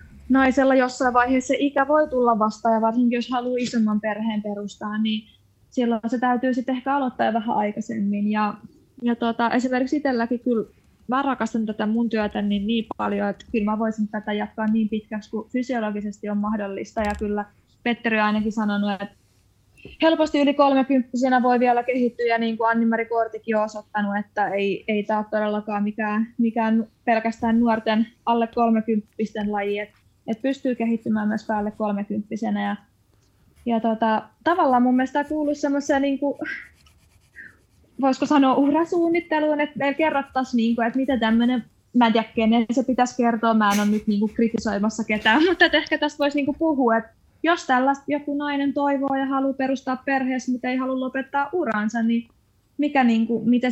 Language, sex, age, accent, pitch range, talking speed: Finnish, female, 20-39, native, 215-260 Hz, 165 wpm